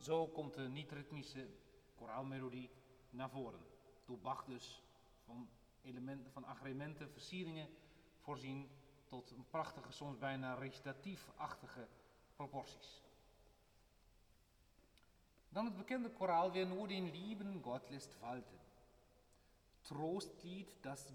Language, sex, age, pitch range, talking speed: Dutch, male, 40-59, 120-155 Hz, 105 wpm